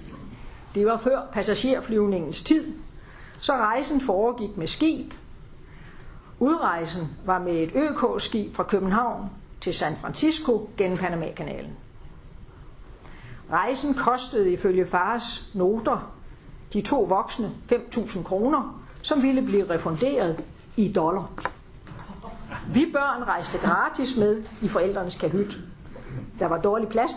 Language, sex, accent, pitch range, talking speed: Danish, female, native, 185-250 Hz, 110 wpm